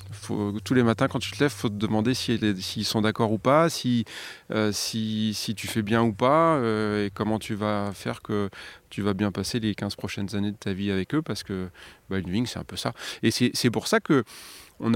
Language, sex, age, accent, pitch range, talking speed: French, male, 30-49, French, 100-120 Hz, 255 wpm